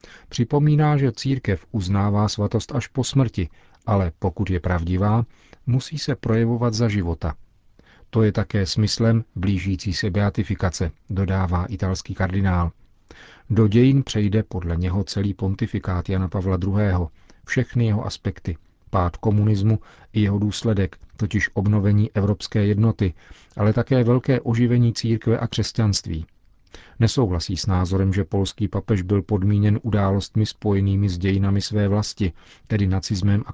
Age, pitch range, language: 40-59, 95-110 Hz, Czech